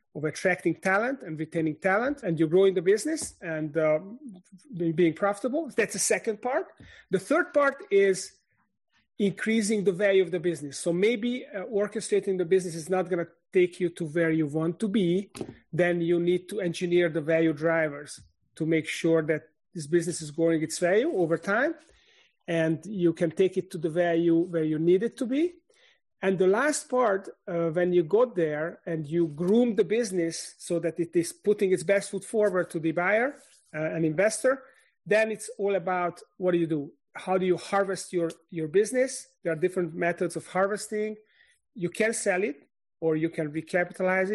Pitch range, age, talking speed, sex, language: 165-215 Hz, 40-59, 190 wpm, male, English